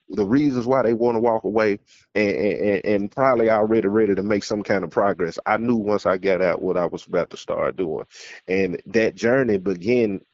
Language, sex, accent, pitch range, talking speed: English, male, American, 105-130 Hz, 215 wpm